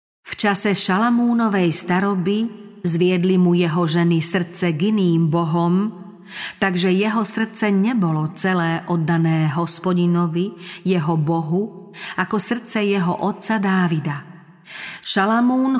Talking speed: 105 wpm